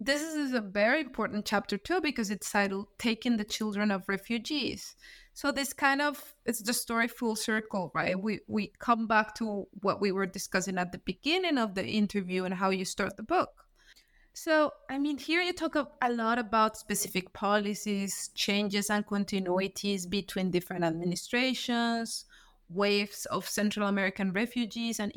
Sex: female